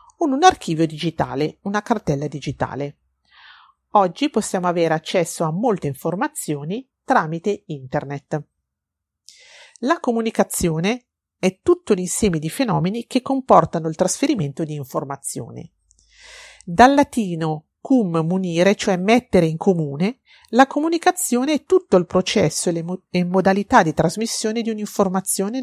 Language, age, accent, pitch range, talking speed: Italian, 40-59, native, 160-230 Hz, 120 wpm